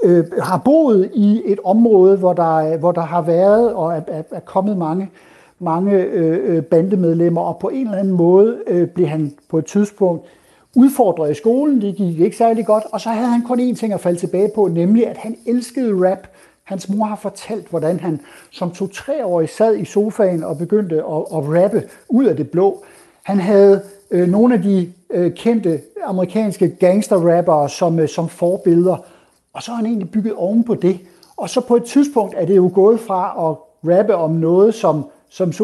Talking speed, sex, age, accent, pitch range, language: 190 wpm, male, 60-79, native, 165-210 Hz, Danish